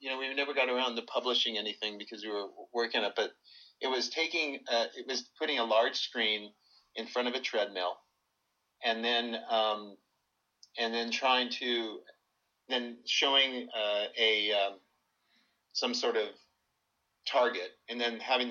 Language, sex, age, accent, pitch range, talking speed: English, male, 40-59, American, 105-125 Hz, 160 wpm